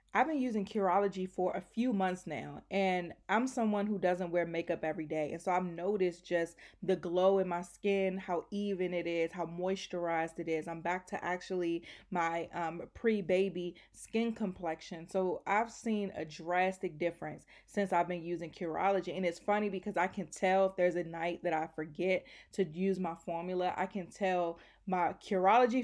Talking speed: 185 wpm